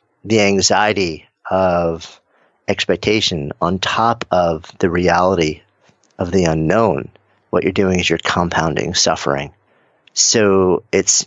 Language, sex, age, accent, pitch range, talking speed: English, male, 50-69, American, 85-110 Hz, 110 wpm